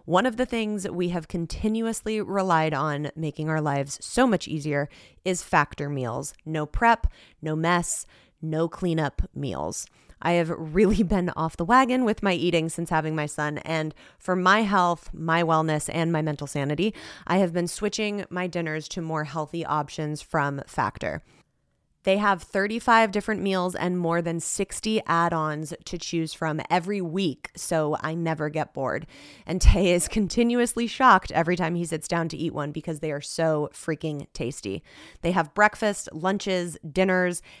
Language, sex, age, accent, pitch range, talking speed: English, female, 20-39, American, 160-200 Hz, 170 wpm